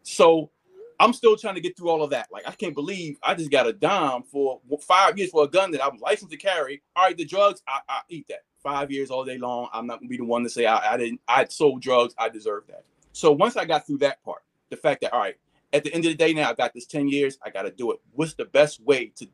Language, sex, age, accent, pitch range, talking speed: English, male, 30-49, American, 120-170 Hz, 300 wpm